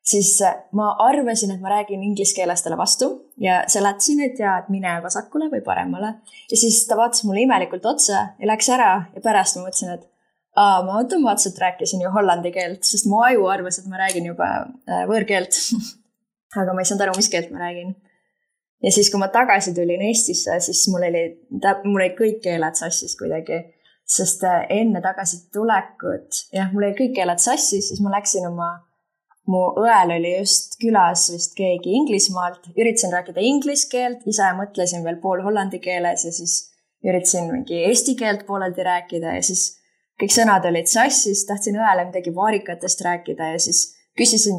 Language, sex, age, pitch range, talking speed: English, female, 20-39, 180-220 Hz, 165 wpm